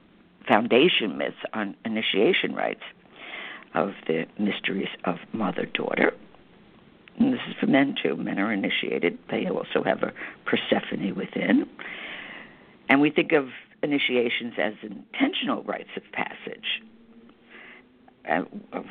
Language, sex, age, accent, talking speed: English, female, 60-79, American, 115 wpm